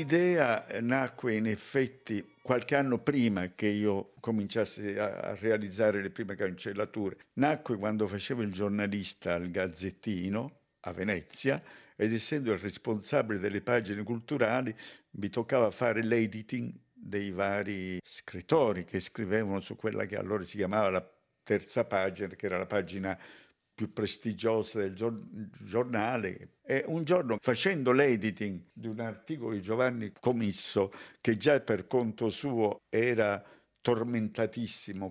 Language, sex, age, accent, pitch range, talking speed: Italian, male, 60-79, native, 105-125 Hz, 130 wpm